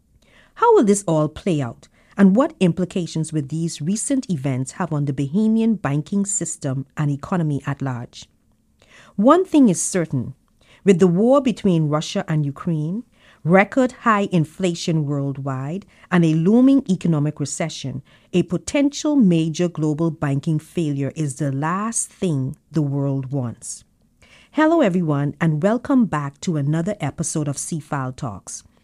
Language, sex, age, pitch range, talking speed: English, female, 50-69, 140-195 Hz, 140 wpm